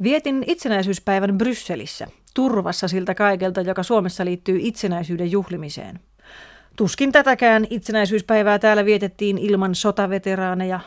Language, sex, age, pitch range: Finnish, female, 30-49, 180-220 Hz